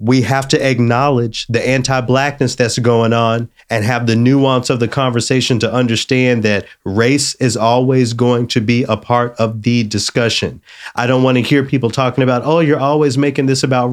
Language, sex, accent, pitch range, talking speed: English, male, American, 110-130 Hz, 190 wpm